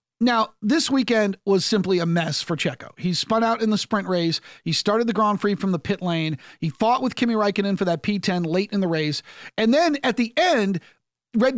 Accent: American